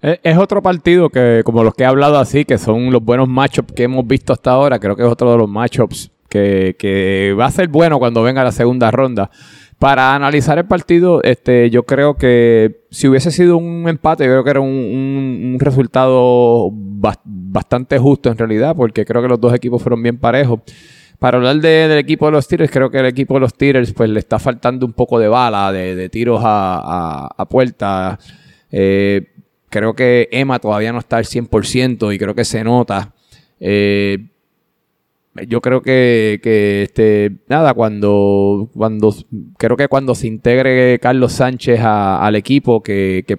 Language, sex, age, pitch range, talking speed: Spanish, male, 20-39, 110-130 Hz, 190 wpm